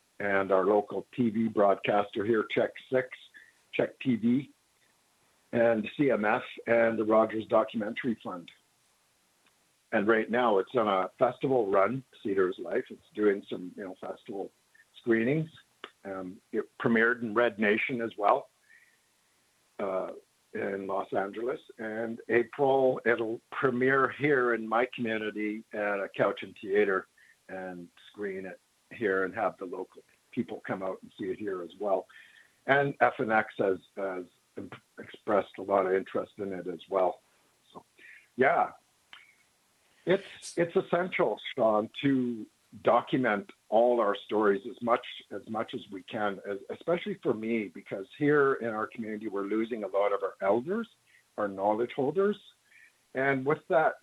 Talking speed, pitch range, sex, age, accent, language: 145 wpm, 105-135 Hz, male, 60-79, American, English